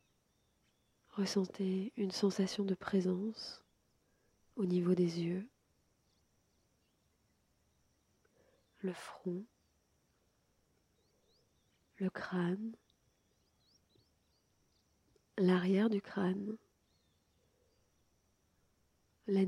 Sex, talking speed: female, 50 wpm